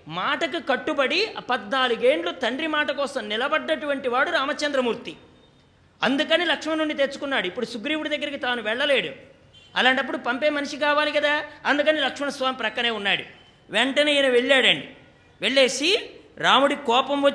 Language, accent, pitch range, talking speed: English, Indian, 245-295 Hz, 120 wpm